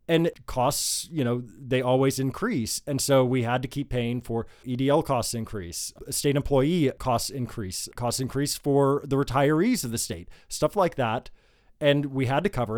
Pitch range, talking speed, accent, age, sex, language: 115-145 Hz, 180 wpm, American, 20-39, male, English